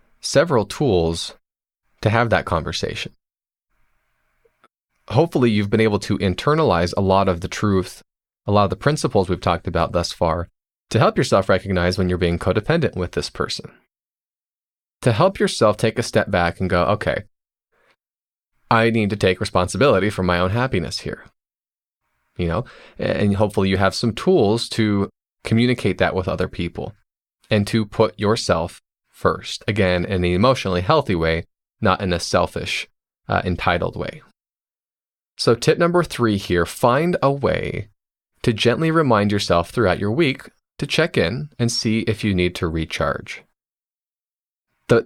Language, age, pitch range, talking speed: English, 20-39, 90-120 Hz, 155 wpm